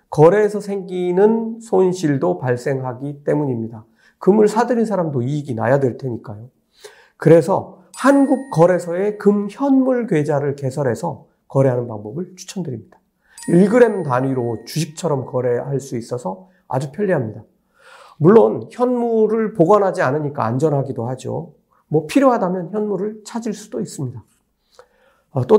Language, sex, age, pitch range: Korean, male, 40-59, 130-200 Hz